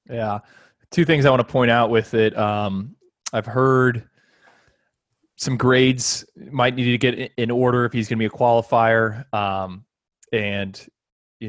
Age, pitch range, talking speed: 20-39, 105-120 Hz, 160 wpm